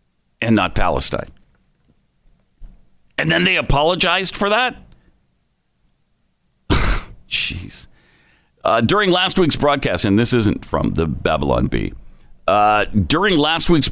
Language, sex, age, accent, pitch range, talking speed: English, male, 50-69, American, 95-160 Hz, 110 wpm